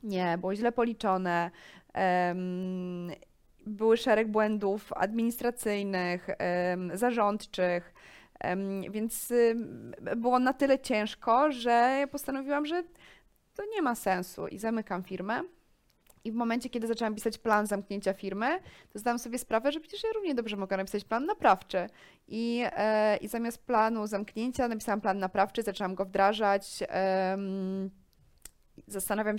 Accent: native